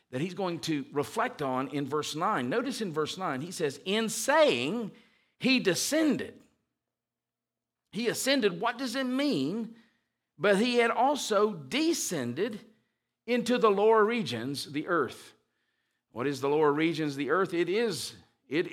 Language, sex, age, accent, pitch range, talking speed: English, male, 50-69, American, 145-220 Hz, 150 wpm